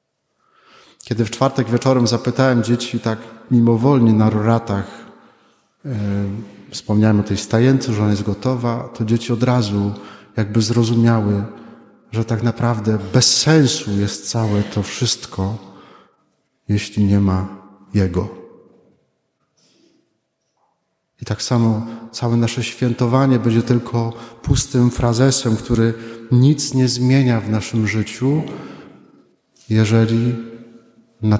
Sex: male